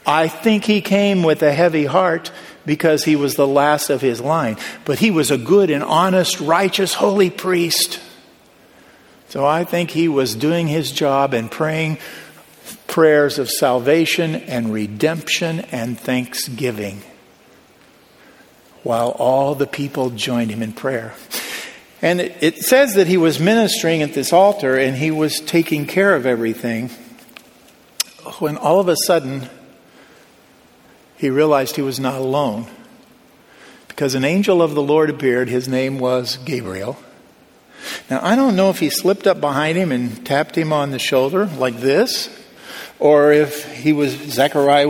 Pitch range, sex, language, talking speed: 130-165 Hz, male, English, 150 wpm